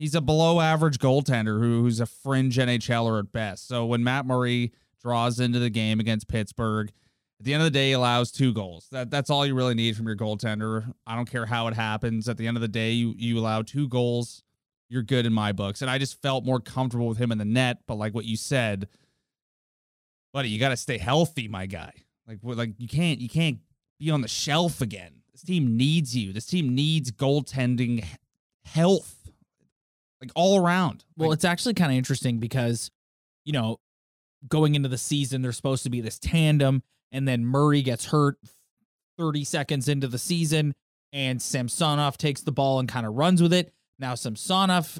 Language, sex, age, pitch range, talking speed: English, male, 30-49, 115-150 Hz, 200 wpm